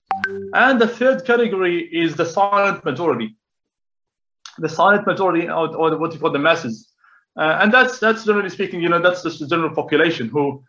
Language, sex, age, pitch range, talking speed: English, male, 30-49, 155-195 Hz, 175 wpm